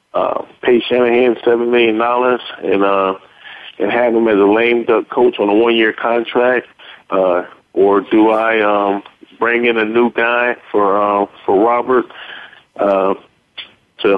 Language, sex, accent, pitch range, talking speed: English, male, American, 100-125 Hz, 155 wpm